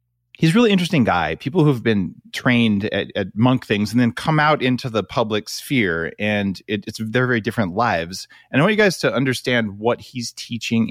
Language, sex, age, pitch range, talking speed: English, male, 30-49, 110-150 Hz, 210 wpm